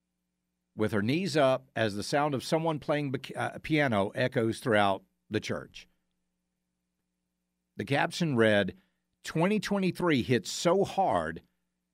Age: 50-69